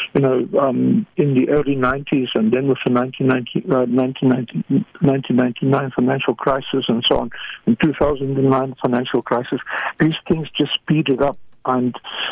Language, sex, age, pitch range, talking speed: English, male, 50-69, 130-150 Hz, 130 wpm